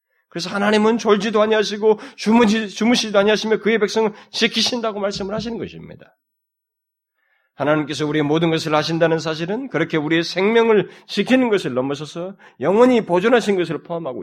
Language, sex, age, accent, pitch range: Korean, male, 30-49, native, 130-220 Hz